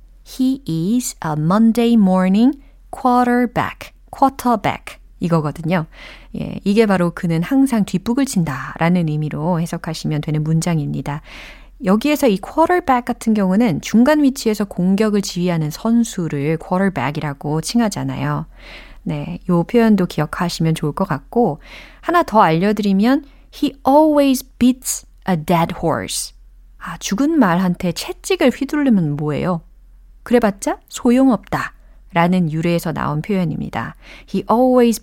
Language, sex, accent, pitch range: Korean, female, native, 165-250 Hz